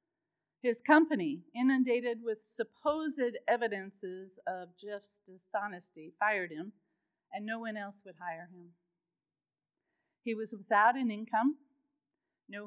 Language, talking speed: English, 115 wpm